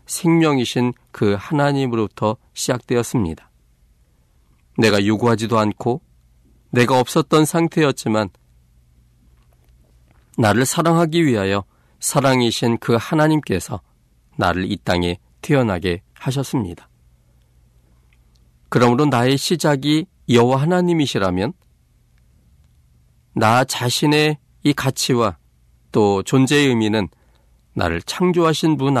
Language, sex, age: Korean, male, 40-59